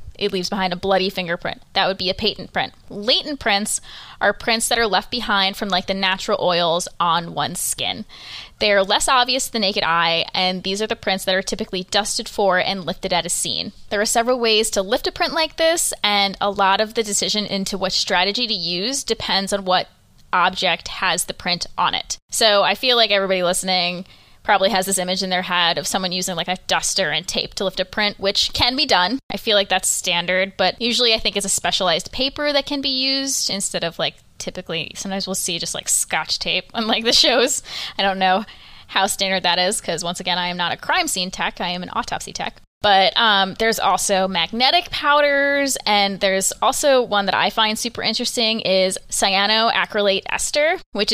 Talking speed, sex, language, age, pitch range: 215 wpm, female, English, 10-29, 185-225 Hz